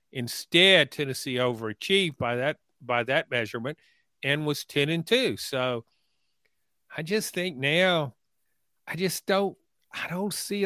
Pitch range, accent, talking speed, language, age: 130-170 Hz, American, 135 wpm, English, 50-69